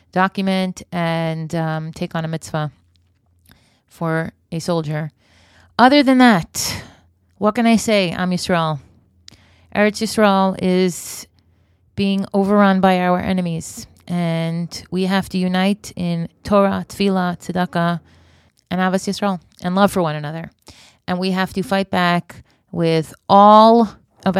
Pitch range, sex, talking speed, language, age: 160-190 Hz, female, 130 wpm, English, 30-49